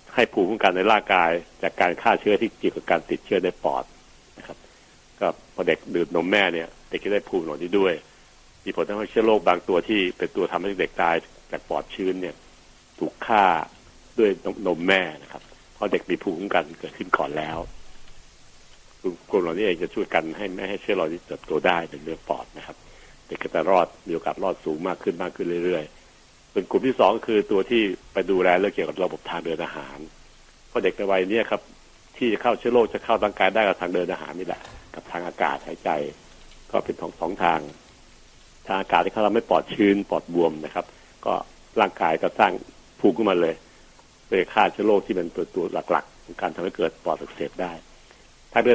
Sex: male